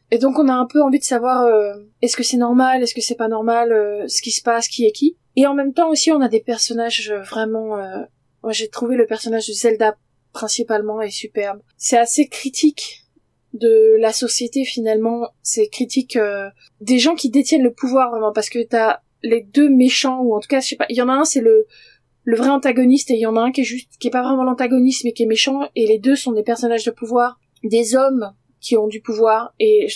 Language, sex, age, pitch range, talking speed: French, female, 20-39, 220-260 Hz, 245 wpm